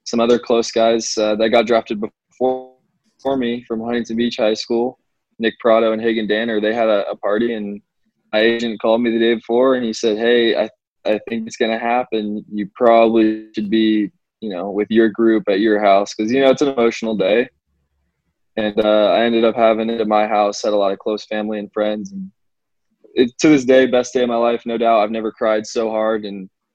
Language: English